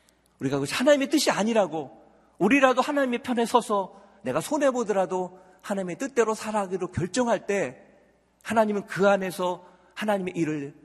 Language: Korean